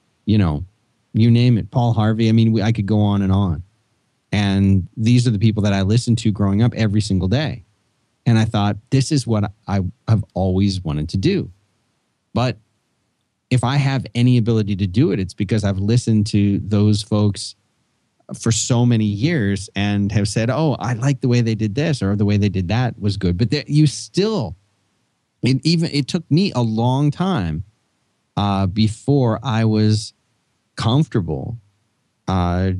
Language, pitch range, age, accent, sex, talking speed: English, 100-125 Hz, 30-49, American, male, 175 wpm